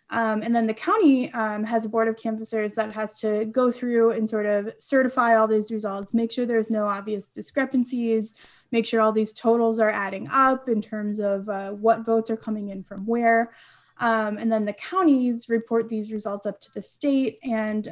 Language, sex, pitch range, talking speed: English, female, 215-250 Hz, 205 wpm